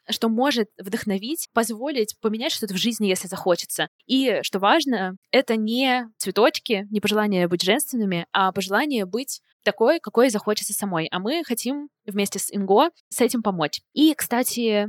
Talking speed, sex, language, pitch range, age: 155 wpm, female, Russian, 200-250 Hz, 20-39